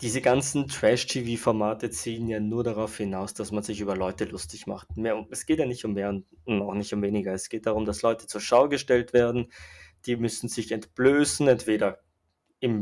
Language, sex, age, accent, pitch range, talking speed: German, male, 20-39, German, 105-130 Hz, 190 wpm